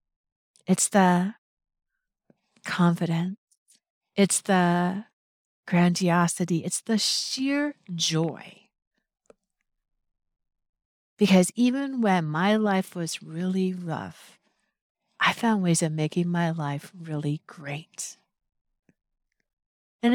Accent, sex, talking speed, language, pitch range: American, female, 85 wpm, English, 160-200 Hz